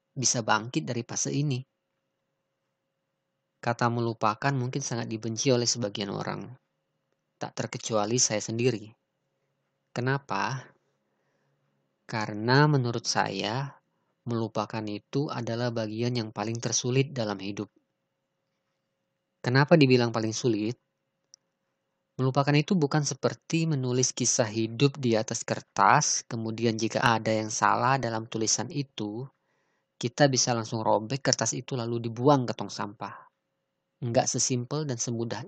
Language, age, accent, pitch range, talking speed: Indonesian, 20-39, native, 110-135 Hz, 115 wpm